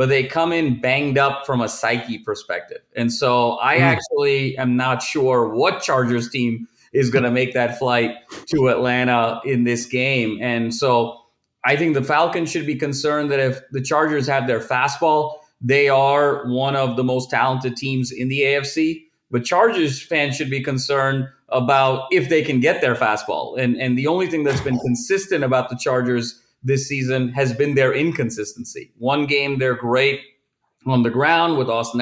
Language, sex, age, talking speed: English, male, 30-49, 180 wpm